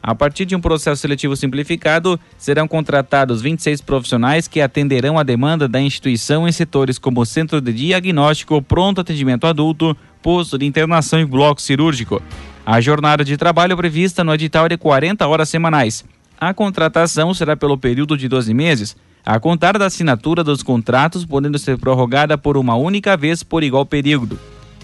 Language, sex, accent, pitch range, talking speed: Portuguese, male, Brazilian, 130-165 Hz, 165 wpm